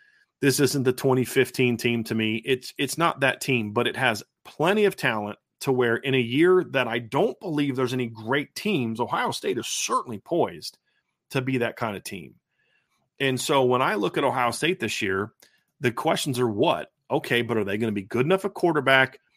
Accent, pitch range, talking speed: American, 115-145 Hz, 210 wpm